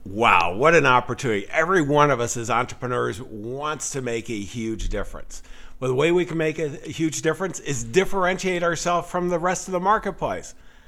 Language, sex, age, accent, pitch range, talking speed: English, male, 50-69, American, 120-170 Hz, 190 wpm